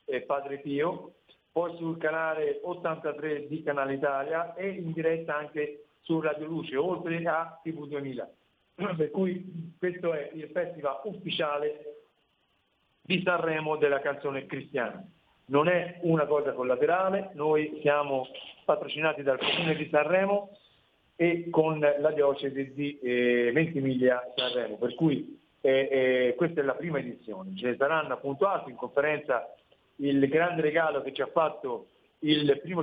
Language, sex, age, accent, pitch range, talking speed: Italian, male, 50-69, native, 140-175 Hz, 140 wpm